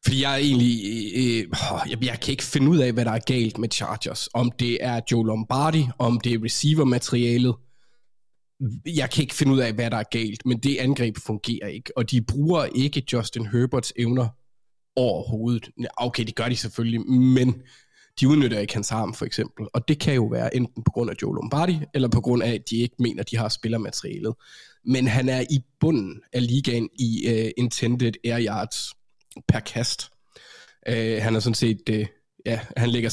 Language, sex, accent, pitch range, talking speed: Danish, male, native, 115-125 Hz, 200 wpm